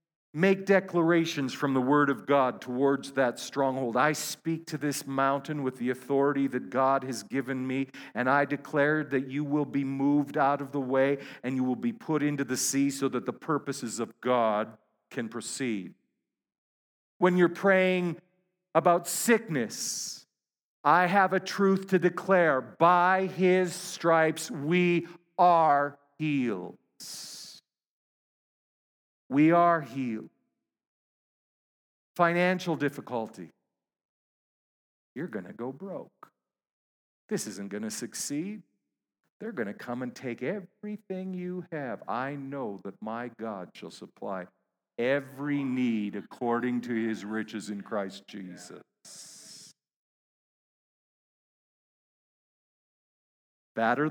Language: English